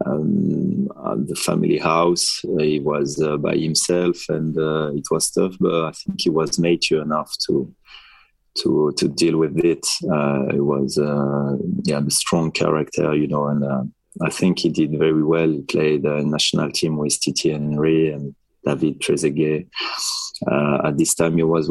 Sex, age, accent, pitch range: male, 20-39, French, 75-85 Hz